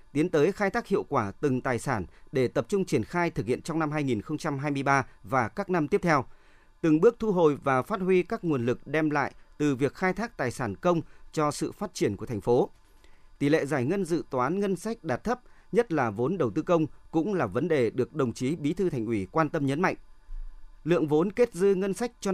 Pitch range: 130-175 Hz